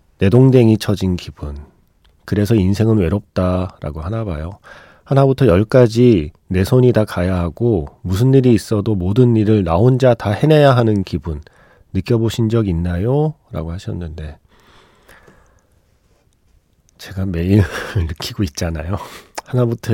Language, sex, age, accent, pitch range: Korean, male, 40-59, native, 90-120 Hz